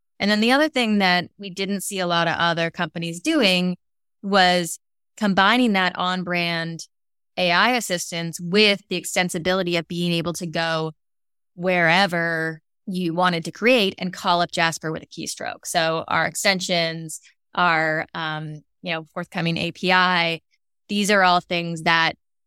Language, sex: English, female